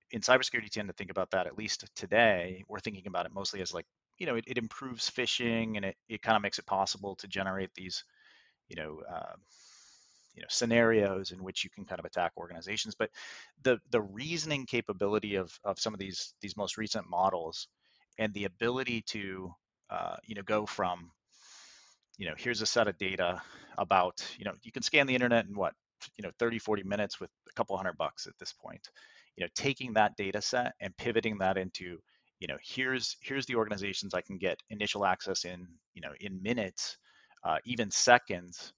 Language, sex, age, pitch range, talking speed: English, male, 30-49, 95-115 Hz, 205 wpm